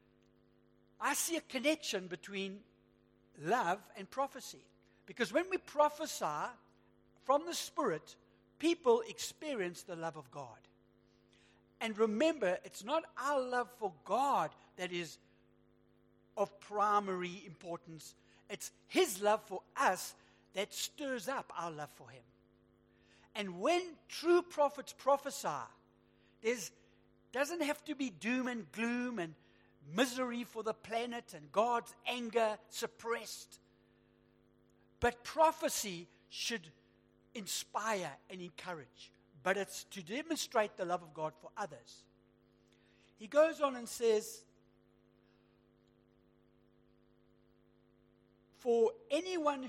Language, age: English, 60-79